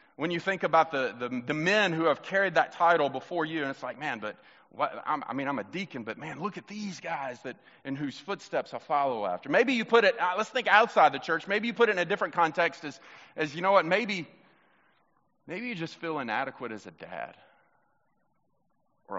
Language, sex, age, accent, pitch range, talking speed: English, male, 30-49, American, 135-180 Hz, 230 wpm